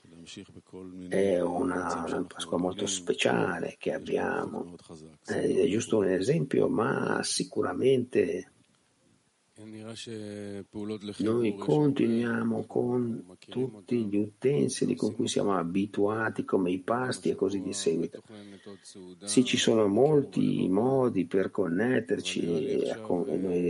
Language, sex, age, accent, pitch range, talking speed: Italian, male, 50-69, native, 100-130 Hz, 100 wpm